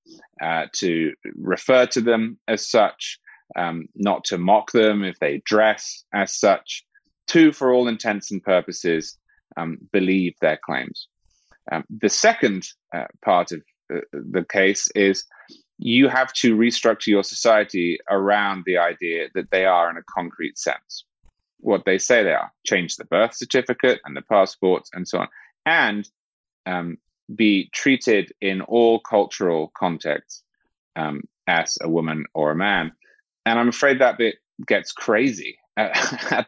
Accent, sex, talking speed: British, male, 150 wpm